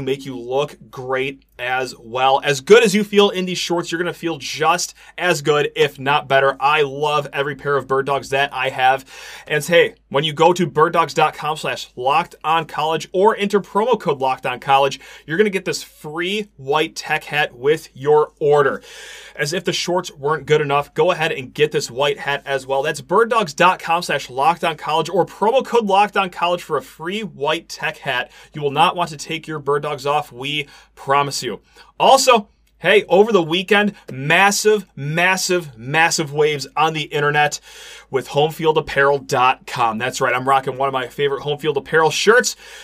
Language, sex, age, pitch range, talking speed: English, male, 30-49, 140-185 Hz, 190 wpm